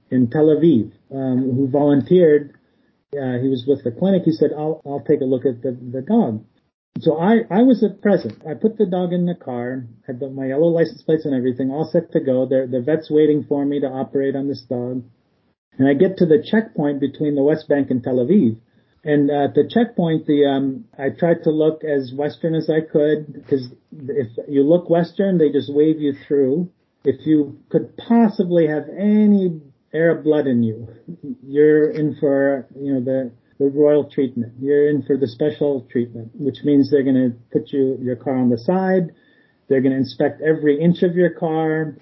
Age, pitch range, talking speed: 40-59, 135-160 Hz, 205 wpm